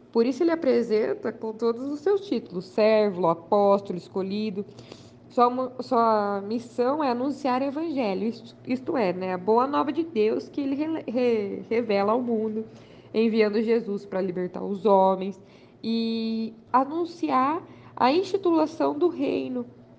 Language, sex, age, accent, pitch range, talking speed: Portuguese, female, 20-39, Brazilian, 200-260 Hz, 130 wpm